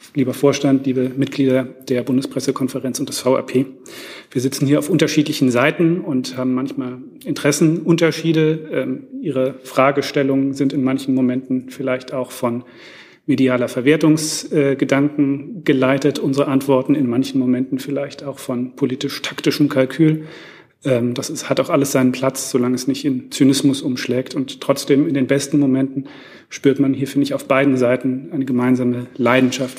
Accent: German